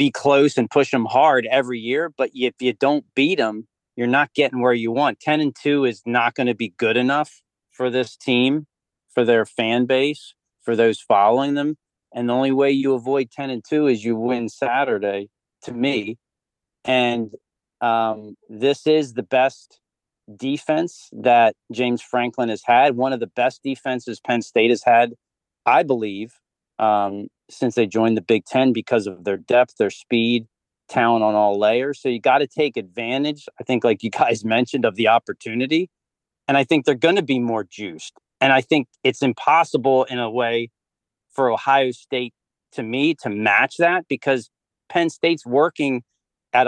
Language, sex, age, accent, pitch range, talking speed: English, male, 40-59, American, 115-140 Hz, 180 wpm